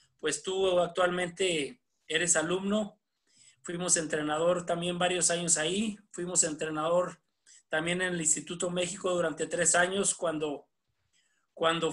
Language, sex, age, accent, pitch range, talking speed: Spanish, male, 30-49, Mexican, 155-190 Hz, 115 wpm